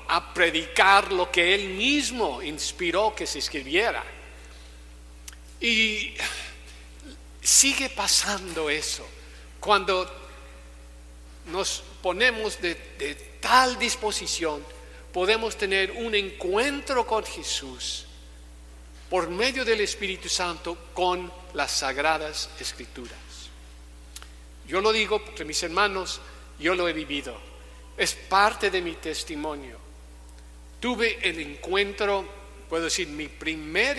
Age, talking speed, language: 50-69, 100 wpm, Spanish